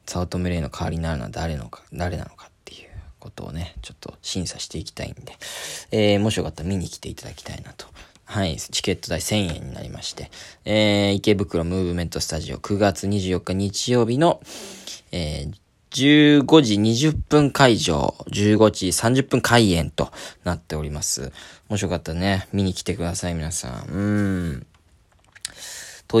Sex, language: male, Japanese